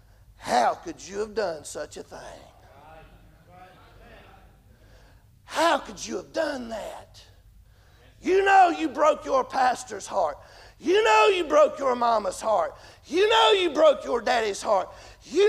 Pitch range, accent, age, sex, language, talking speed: 260-335 Hz, American, 40-59, male, English, 140 wpm